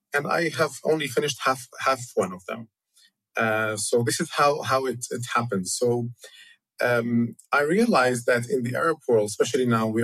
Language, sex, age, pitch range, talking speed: English, male, 30-49, 110-135 Hz, 185 wpm